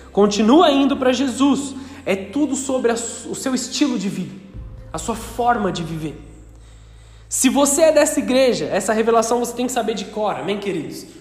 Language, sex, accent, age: Portuguese, male, Brazilian, 20-39